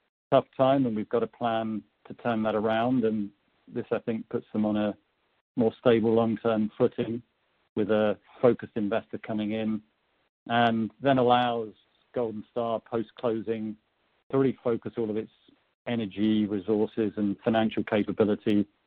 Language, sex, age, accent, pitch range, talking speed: English, male, 50-69, British, 105-120 Hz, 145 wpm